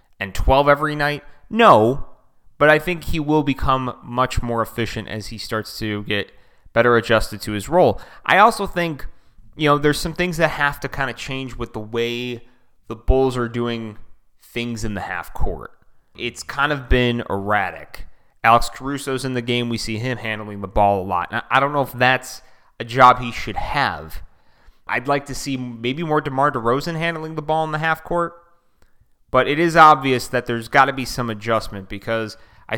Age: 30-49